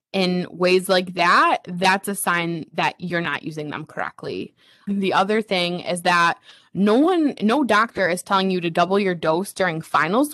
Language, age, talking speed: English, 20-39, 180 wpm